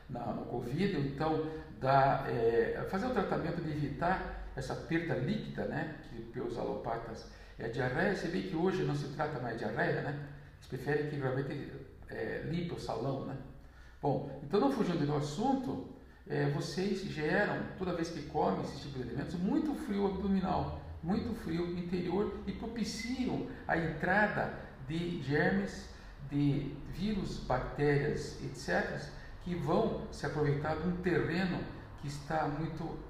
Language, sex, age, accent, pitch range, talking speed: Portuguese, male, 50-69, Brazilian, 140-185 Hz, 155 wpm